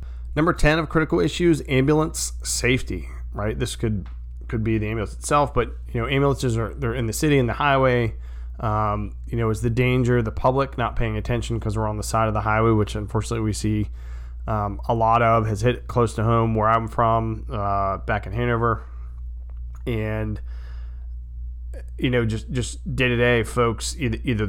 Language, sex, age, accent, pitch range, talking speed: English, male, 20-39, American, 95-120 Hz, 190 wpm